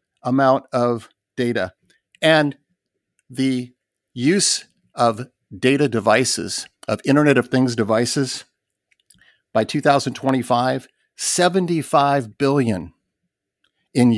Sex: male